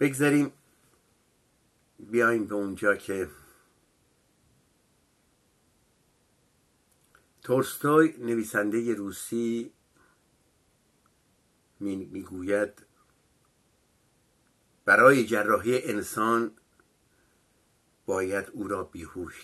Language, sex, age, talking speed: Persian, male, 60-79, 50 wpm